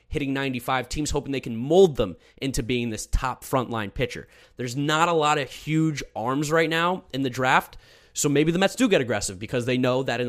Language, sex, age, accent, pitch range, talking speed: English, male, 20-39, American, 120-155 Hz, 220 wpm